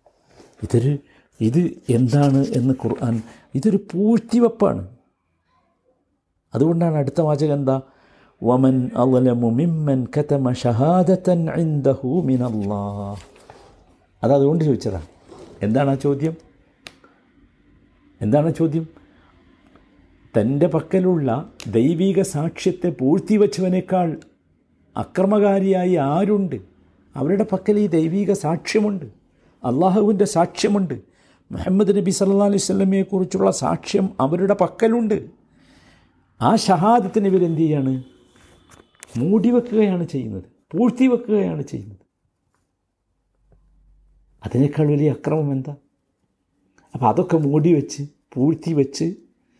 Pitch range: 120-185 Hz